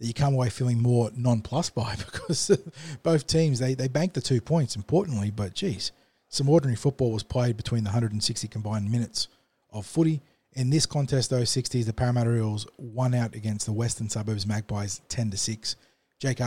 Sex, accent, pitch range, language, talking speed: male, Australian, 105-125 Hz, English, 180 wpm